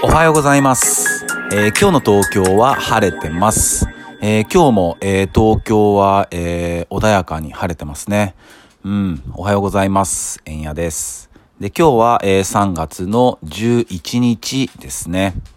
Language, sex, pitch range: Japanese, male, 85-105 Hz